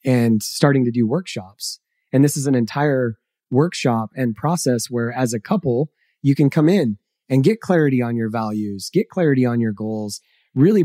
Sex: male